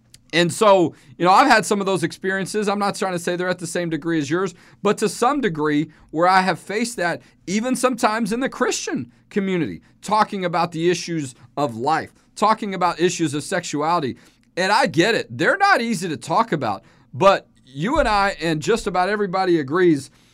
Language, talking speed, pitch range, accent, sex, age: English, 200 wpm, 165-215 Hz, American, male, 40-59